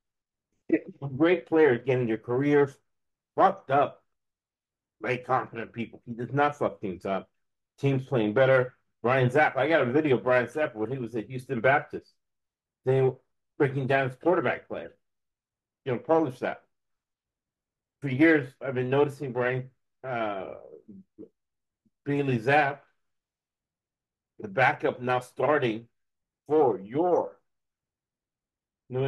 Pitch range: 110-135 Hz